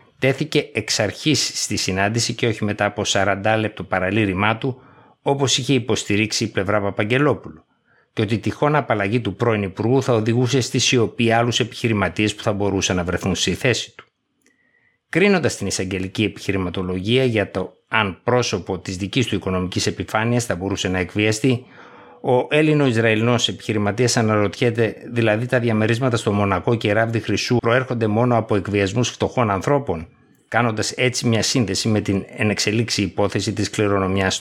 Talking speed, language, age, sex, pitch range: 145 wpm, Greek, 60-79, male, 100-125 Hz